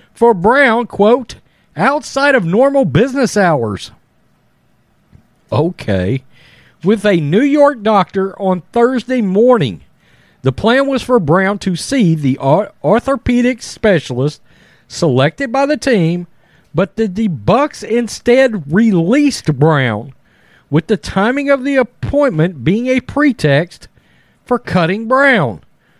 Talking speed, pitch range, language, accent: 115 wpm, 165-245 Hz, English, American